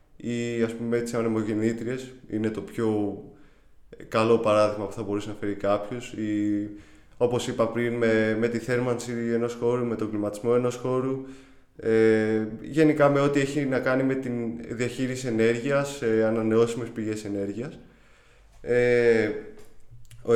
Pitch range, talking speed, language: 110-125 Hz, 140 wpm, Greek